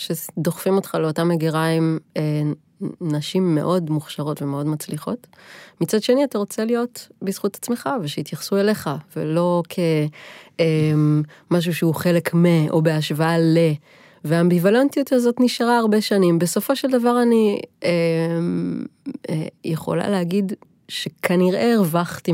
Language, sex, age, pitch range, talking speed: Hebrew, female, 20-39, 160-205 Hz, 120 wpm